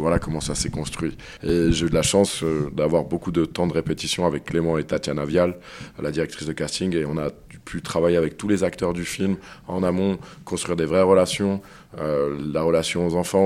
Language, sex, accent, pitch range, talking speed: French, male, French, 75-90 Hz, 220 wpm